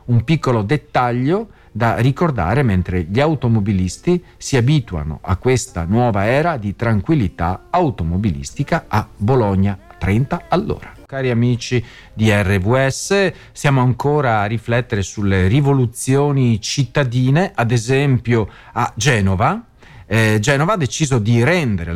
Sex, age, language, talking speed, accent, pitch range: male, 40-59, Italian, 115 wpm, native, 110-155 Hz